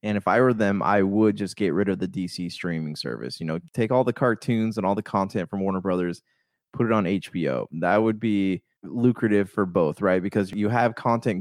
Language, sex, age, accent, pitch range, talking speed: English, male, 20-39, American, 95-115 Hz, 225 wpm